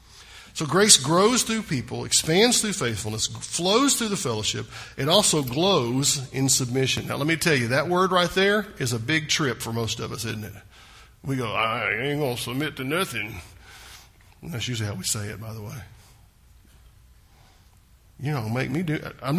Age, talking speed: 50-69, 185 wpm